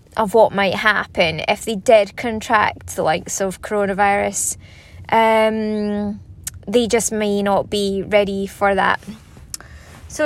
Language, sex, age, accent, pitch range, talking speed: English, female, 20-39, British, 195-230 Hz, 130 wpm